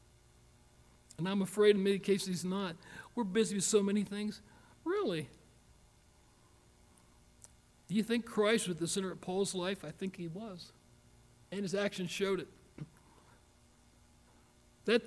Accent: American